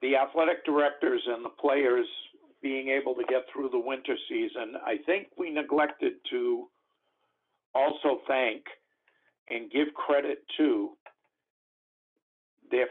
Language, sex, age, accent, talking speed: English, male, 50-69, American, 120 wpm